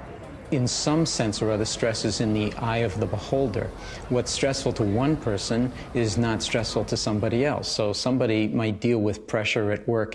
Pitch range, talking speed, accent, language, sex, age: 110-130 Hz, 185 wpm, American, English, male, 50-69